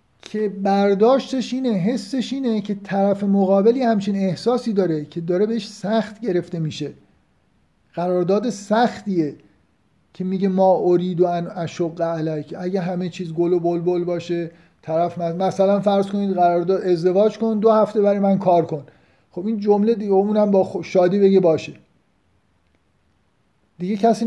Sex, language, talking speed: male, Persian, 145 wpm